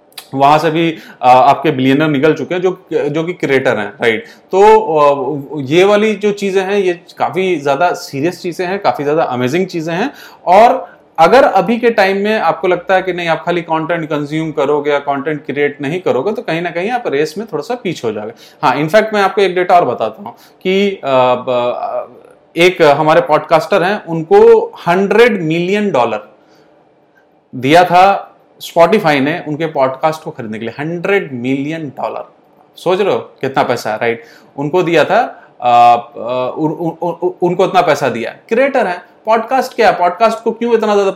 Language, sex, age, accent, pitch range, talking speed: Hindi, male, 30-49, native, 150-195 Hz, 165 wpm